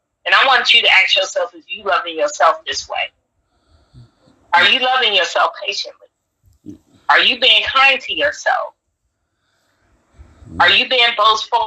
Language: English